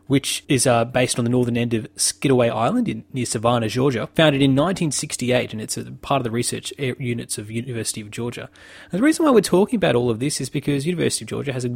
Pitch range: 115-145 Hz